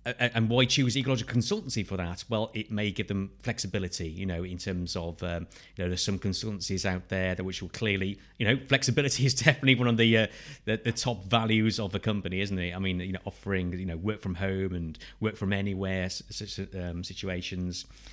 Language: English